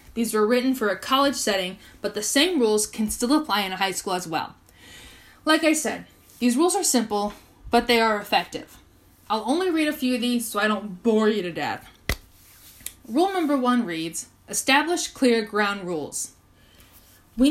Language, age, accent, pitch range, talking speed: English, 10-29, American, 200-255 Hz, 185 wpm